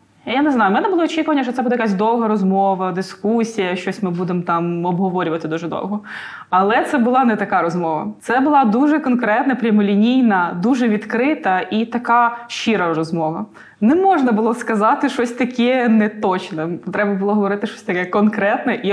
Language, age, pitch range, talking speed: Ukrainian, 20-39, 185-230 Hz, 165 wpm